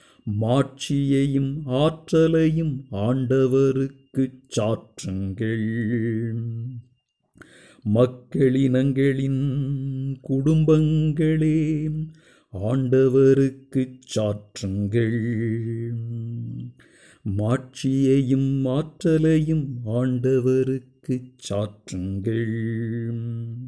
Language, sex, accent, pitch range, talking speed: Tamil, male, native, 120-175 Hz, 30 wpm